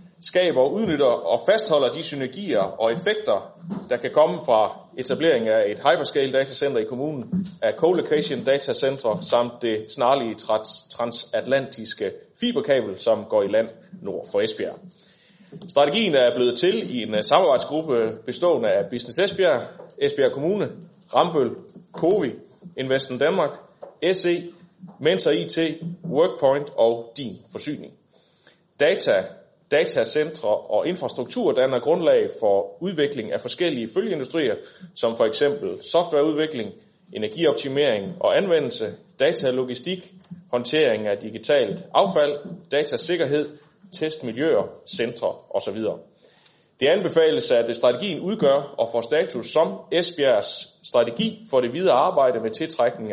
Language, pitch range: Danish, 125-200 Hz